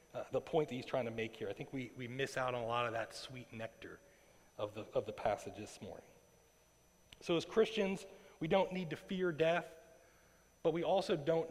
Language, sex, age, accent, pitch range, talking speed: English, male, 40-59, American, 130-160 Hz, 220 wpm